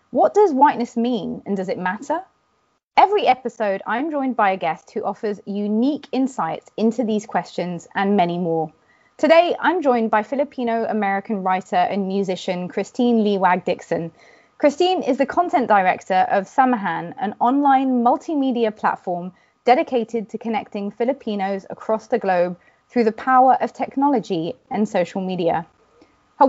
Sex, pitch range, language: female, 195-255 Hz, English